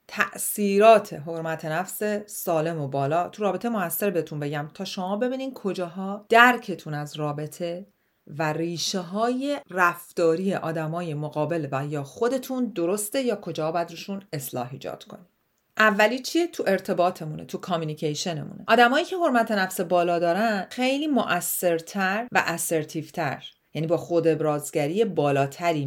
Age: 40-59